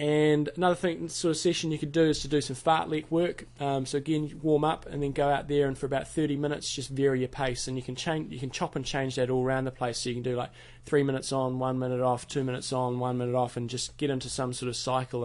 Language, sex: English, male